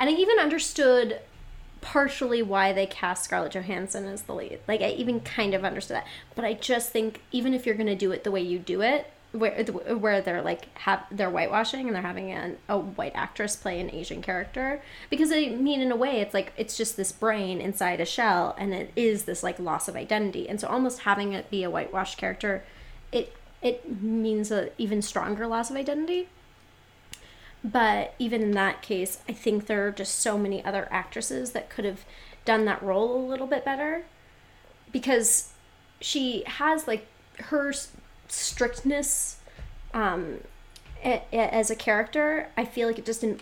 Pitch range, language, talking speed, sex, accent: 200-255 Hz, English, 185 wpm, female, American